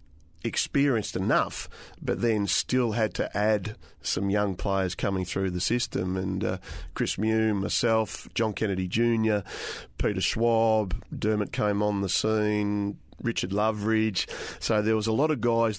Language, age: English, 40-59